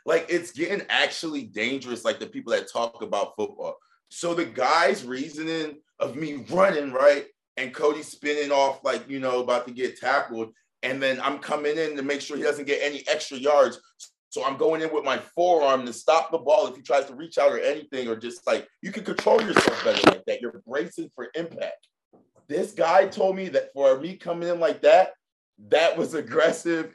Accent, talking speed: American, 205 wpm